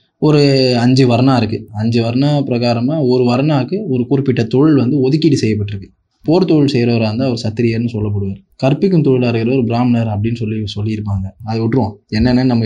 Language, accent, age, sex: Tamil, native, 20-39, male